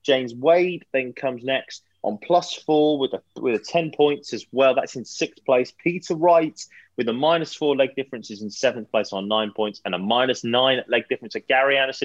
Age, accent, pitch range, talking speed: 20-39, British, 120-160 Hz, 215 wpm